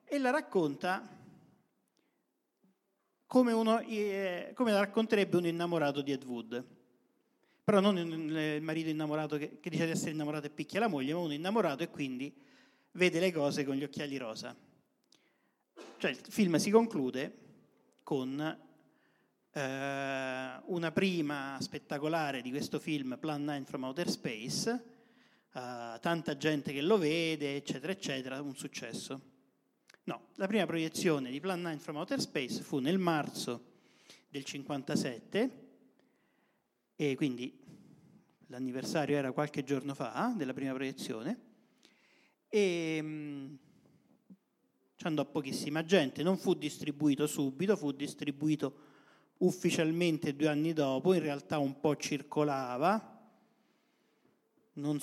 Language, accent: Italian, native